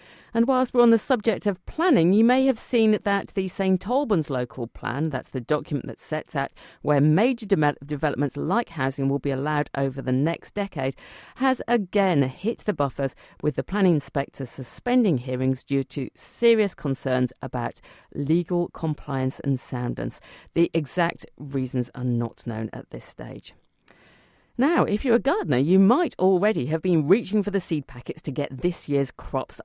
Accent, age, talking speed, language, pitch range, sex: British, 50-69, 170 wpm, English, 130-205 Hz, female